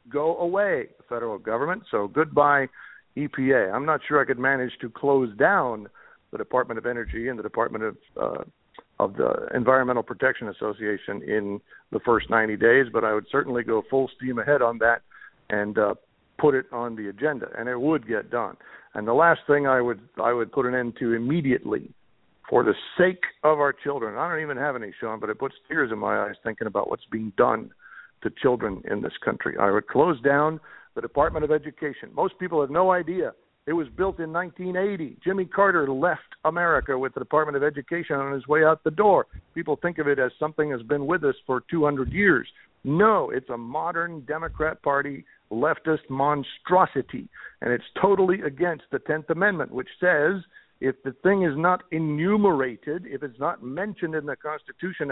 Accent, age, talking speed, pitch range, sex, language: American, 60-79, 190 wpm, 130-170 Hz, male, English